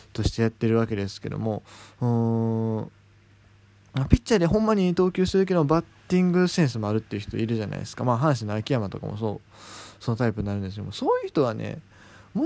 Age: 20-39